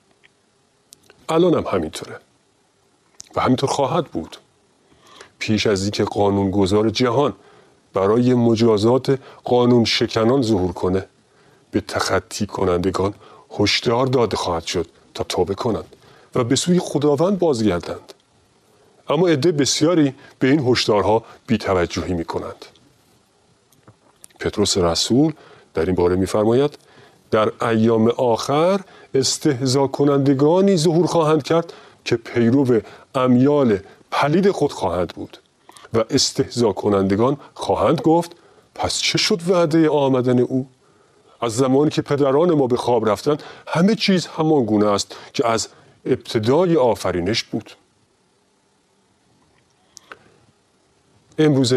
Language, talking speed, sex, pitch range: Persian, 110 wpm, male, 110-150 Hz